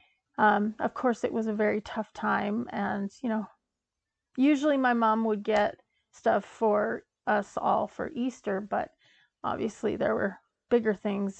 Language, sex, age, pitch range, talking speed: English, female, 30-49, 210-250 Hz, 155 wpm